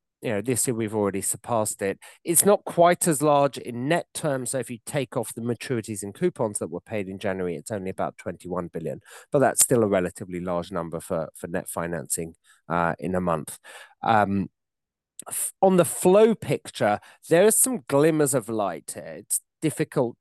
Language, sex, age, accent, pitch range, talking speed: English, male, 30-49, British, 95-130 Hz, 180 wpm